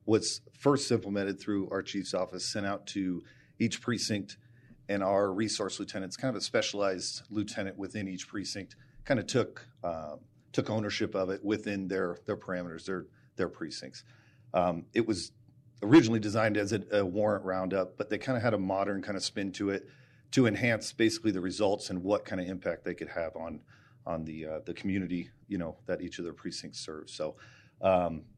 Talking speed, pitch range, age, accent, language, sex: 190 wpm, 90-115 Hz, 40-59, American, English, male